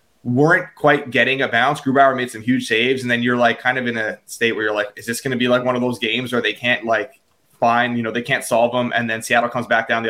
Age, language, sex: 20-39, English, male